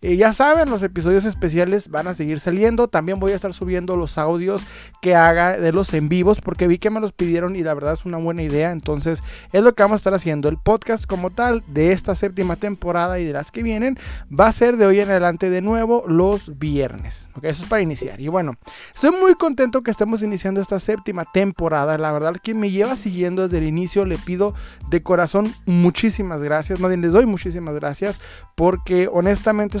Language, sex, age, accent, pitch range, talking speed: Spanish, male, 30-49, Mexican, 170-205 Hz, 215 wpm